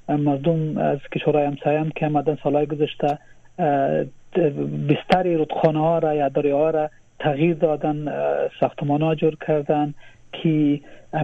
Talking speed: 115 wpm